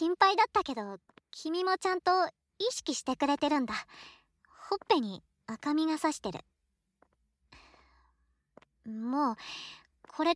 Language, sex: Japanese, male